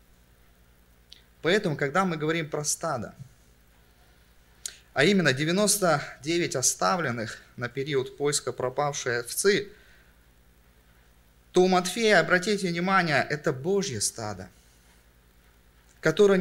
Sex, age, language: male, 30-49, Russian